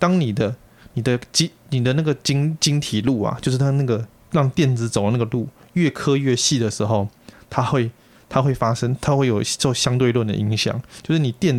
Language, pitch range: Chinese, 110-140 Hz